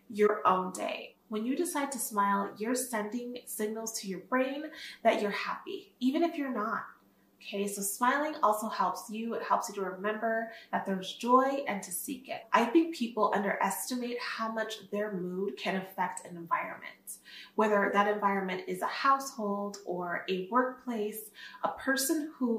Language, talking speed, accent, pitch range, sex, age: English, 165 wpm, American, 200-250 Hz, female, 20-39